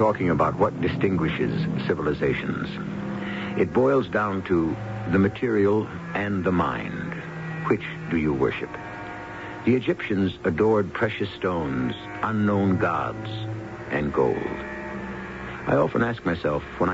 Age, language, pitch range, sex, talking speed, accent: 60-79, English, 85-115 Hz, male, 115 wpm, American